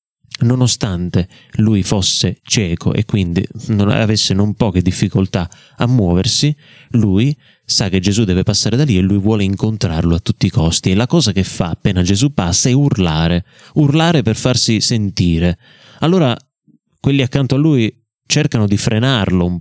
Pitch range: 95-130 Hz